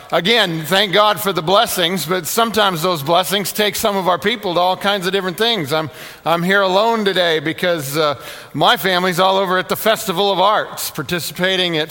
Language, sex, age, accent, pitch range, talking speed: English, male, 50-69, American, 160-190 Hz, 195 wpm